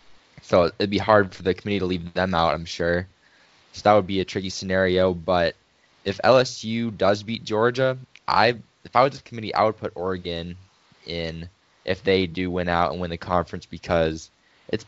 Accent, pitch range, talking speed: American, 85-100 Hz, 195 wpm